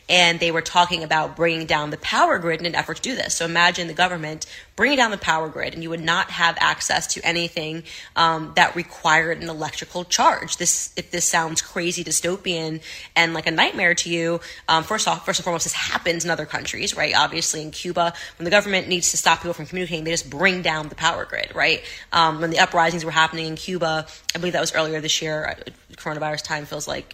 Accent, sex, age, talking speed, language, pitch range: American, female, 20-39, 225 wpm, English, 160-180 Hz